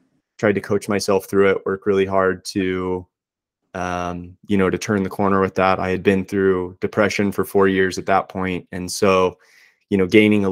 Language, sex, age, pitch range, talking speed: English, male, 20-39, 95-115 Hz, 205 wpm